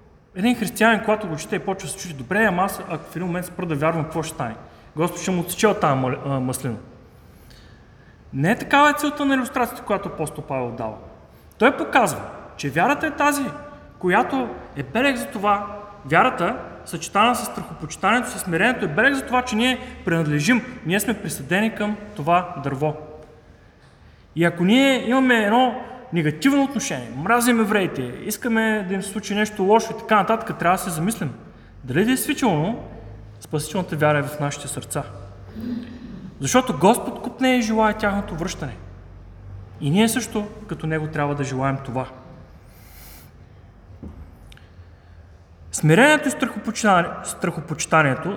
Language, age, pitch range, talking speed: Bulgarian, 30-49, 140-220 Hz, 145 wpm